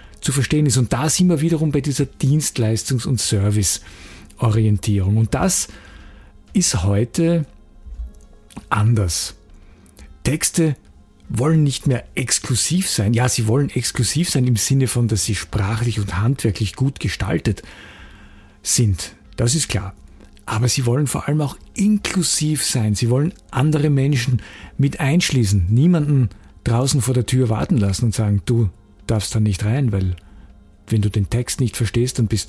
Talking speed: 150 wpm